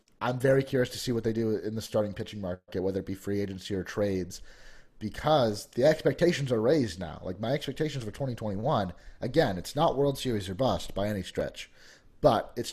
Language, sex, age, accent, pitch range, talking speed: English, male, 30-49, American, 100-135 Hz, 205 wpm